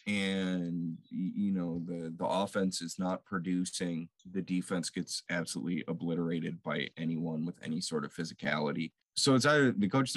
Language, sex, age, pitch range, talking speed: English, male, 20-39, 85-105 Hz, 155 wpm